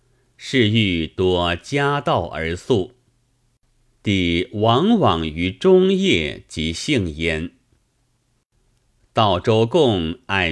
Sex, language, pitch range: male, Chinese, 90-125 Hz